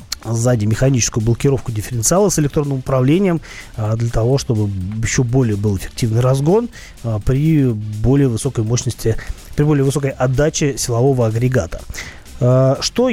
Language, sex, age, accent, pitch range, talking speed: Russian, male, 30-49, native, 120-150 Hz, 120 wpm